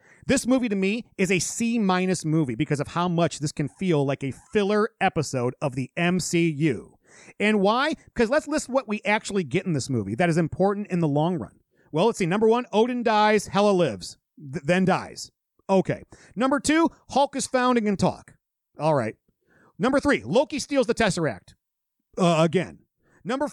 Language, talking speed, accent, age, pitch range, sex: English, 185 wpm, American, 40-59, 170-245 Hz, male